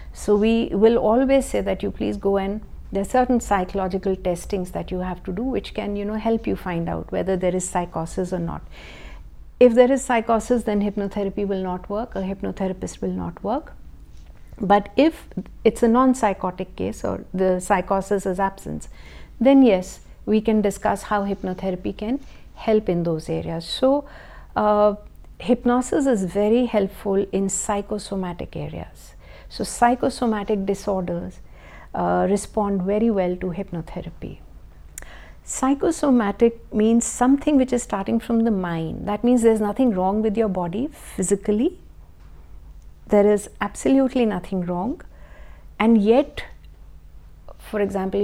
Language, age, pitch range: Hindi, 60-79, 175-220 Hz